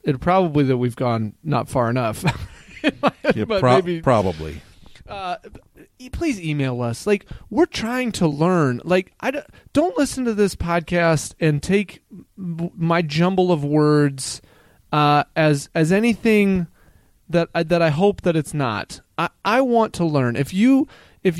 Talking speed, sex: 145 wpm, male